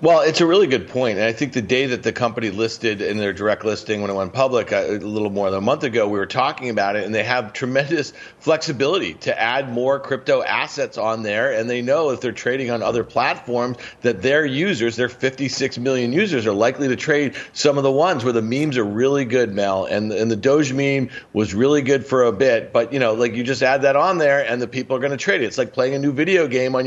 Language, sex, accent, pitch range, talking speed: English, male, American, 120-145 Hz, 255 wpm